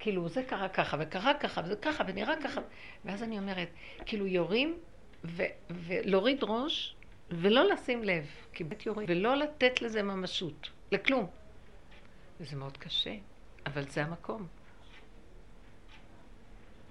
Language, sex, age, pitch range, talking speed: Hebrew, female, 60-79, 170-235 Hz, 115 wpm